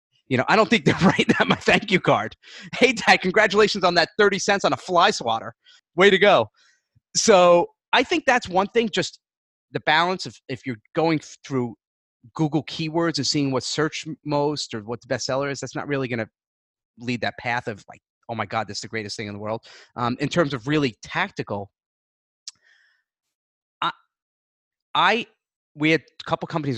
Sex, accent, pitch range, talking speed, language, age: male, American, 115-160 Hz, 195 wpm, English, 30-49